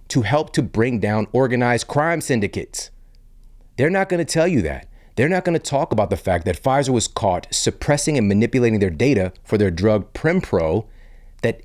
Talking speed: 180 wpm